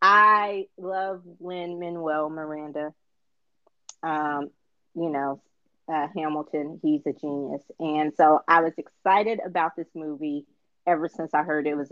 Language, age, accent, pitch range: English, 30-49, American, 150-180 Hz